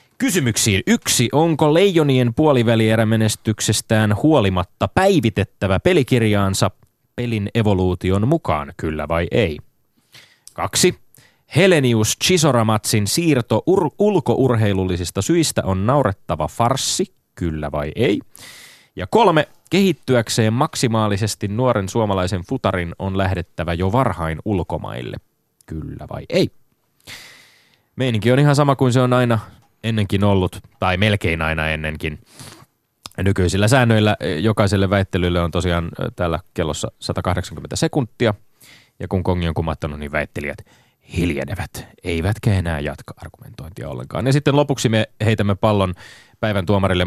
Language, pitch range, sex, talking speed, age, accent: Finnish, 95-120 Hz, male, 110 wpm, 30-49, native